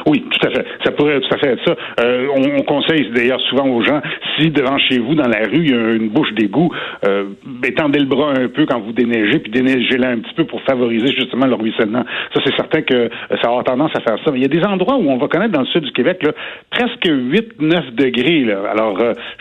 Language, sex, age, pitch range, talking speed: French, male, 70-89, 120-160 Hz, 255 wpm